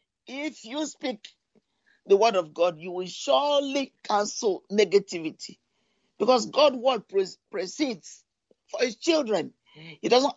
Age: 50-69